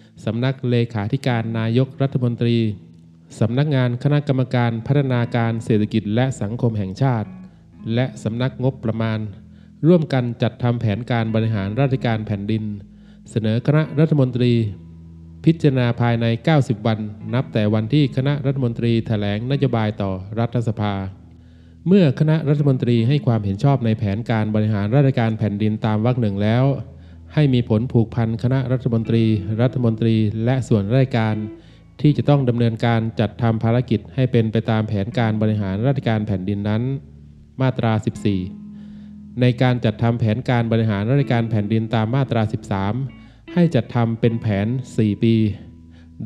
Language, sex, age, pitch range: Thai, male, 20-39, 110-130 Hz